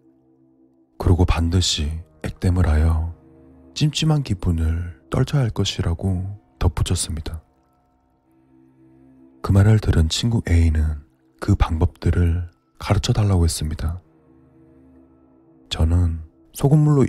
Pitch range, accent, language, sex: 80-105 Hz, native, Korean, male